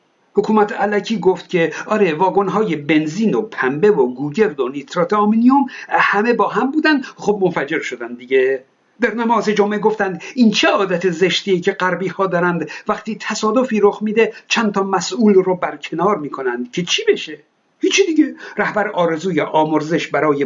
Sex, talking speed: male, 155 wpm